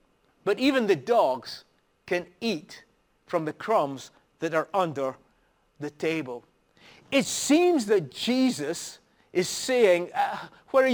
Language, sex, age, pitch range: English, male, 50-69, 155-245 Hz